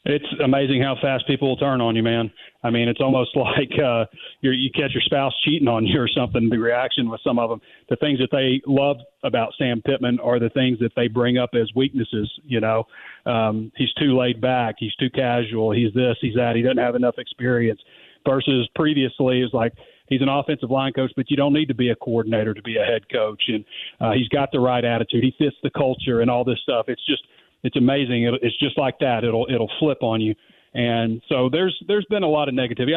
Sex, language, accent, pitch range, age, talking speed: male, English, American, 120-135 Hz, 40-59, 230 wpm